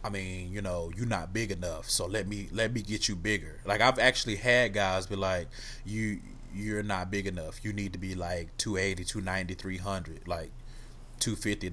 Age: 30-49